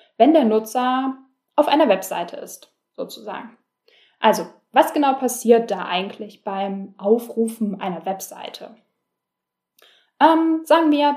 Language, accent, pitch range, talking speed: German, German, 210-295 Hz, 115 wpm